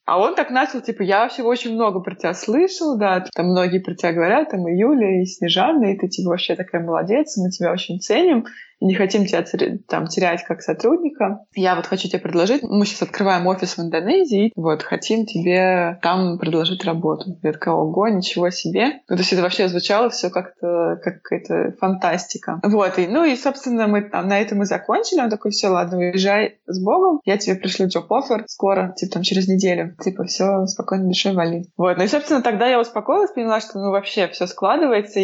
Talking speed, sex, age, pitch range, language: 200 wpm, female, 20-39, 180-220 Hz, Russian